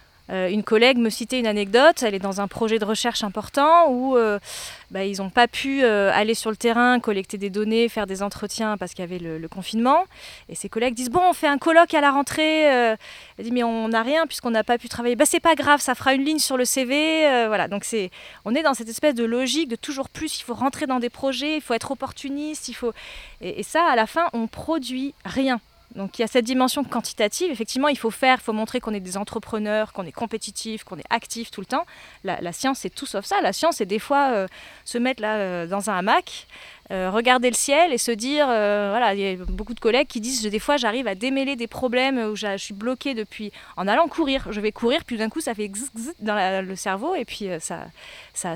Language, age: French, 20-39